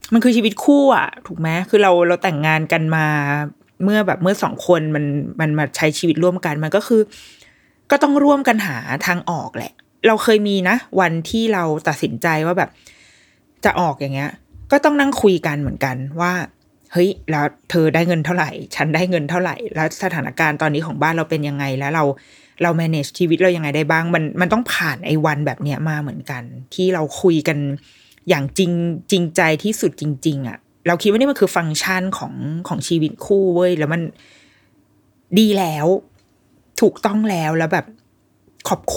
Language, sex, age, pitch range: Thai, female, 20-39, 150-195 Hz